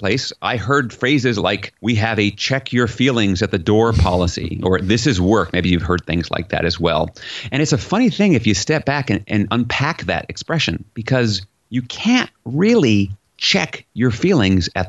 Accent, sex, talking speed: American, male, 200 wpm